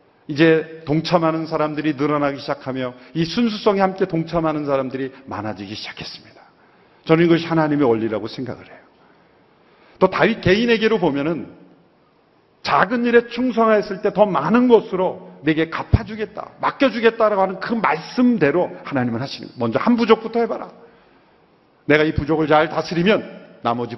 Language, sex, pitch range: Korean, male, 120-170 Hz